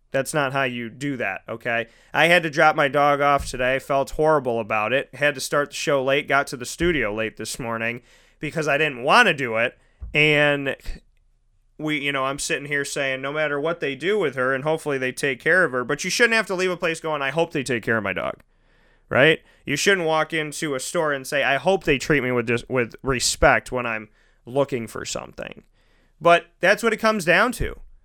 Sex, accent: male, American